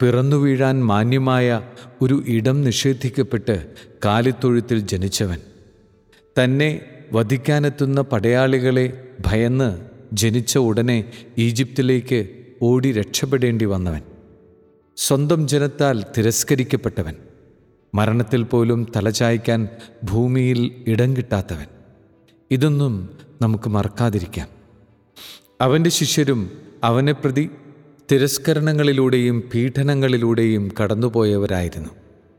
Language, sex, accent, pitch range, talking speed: Malayalam, male, native, 110-135 Hz, 70 wpm